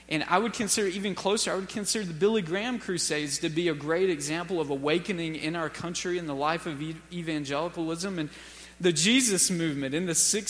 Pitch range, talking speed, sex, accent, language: 155-190 Hz, 200 wpm, male, American, English